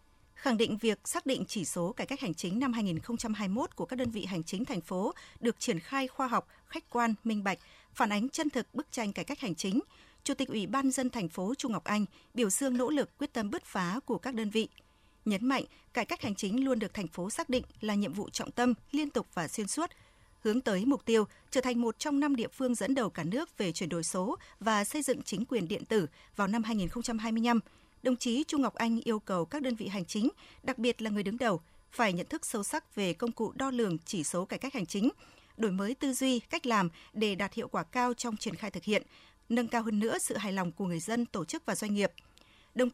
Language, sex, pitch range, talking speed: Vietnamese, female, 205-255 Hz, 250 wpm